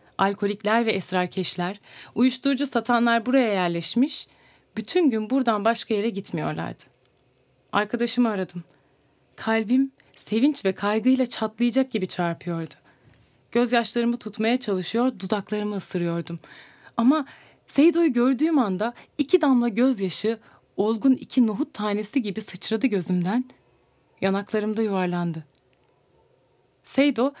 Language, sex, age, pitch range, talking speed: Turkish, female, 30-49, 180-250 Hz, 95 wpm